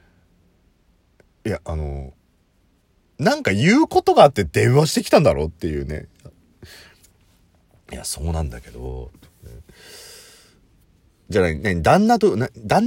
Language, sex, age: Japanese, male, 40-59